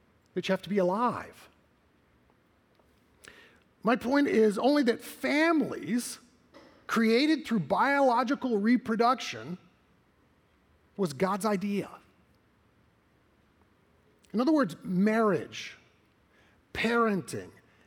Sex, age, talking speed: male, 50-69, 80 wpm